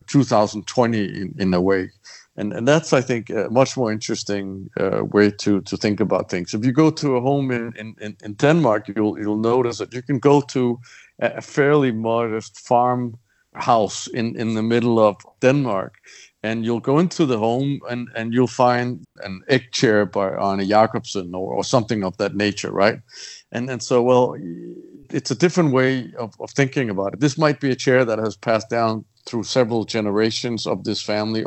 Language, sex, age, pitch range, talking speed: English, male, 50-69, 105-125 Hz, 195 wpm